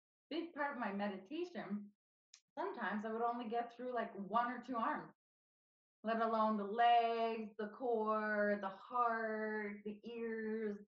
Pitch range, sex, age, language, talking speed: 195-235 Hz, female, 20-39, English, 145 wpm